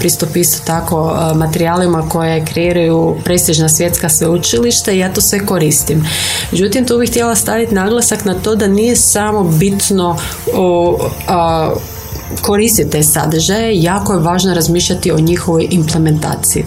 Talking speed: 125 wpm